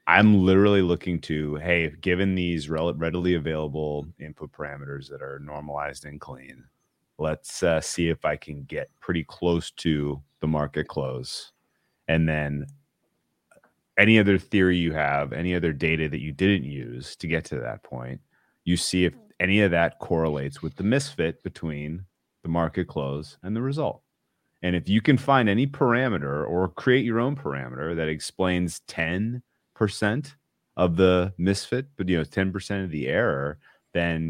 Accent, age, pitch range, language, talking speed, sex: American, 30-49, 75-95 Hz, English, 160 wpm, male